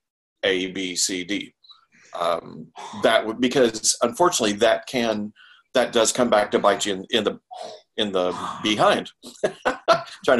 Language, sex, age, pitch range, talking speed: English, male, 40-59, 95-115 Hz, 145 wpm